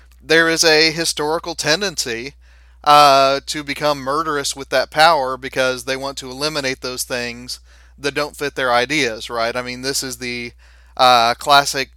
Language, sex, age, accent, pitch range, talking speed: English, male, 30-49, American, 120-145 Hz, 160 wpm